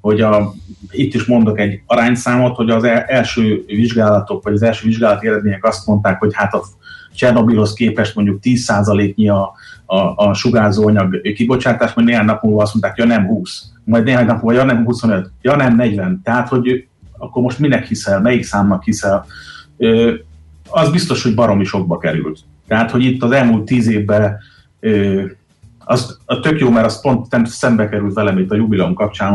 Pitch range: 100-120 Hz